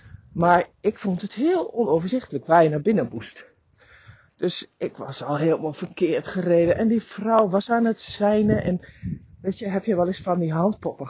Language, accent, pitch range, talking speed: Dutch, Dutch, 145-185 Hz, 185 wpm